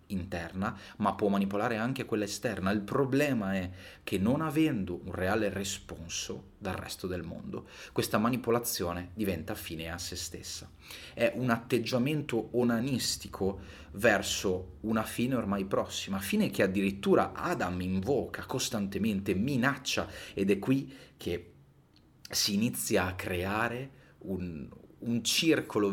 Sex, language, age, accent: male, Italian, 30-49, native